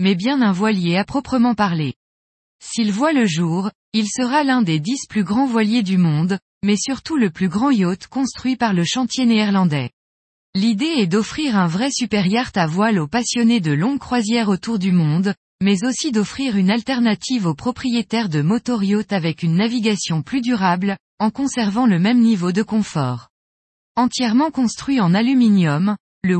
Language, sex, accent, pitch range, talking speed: French, female, French, 180-240 Hz, 170 wpm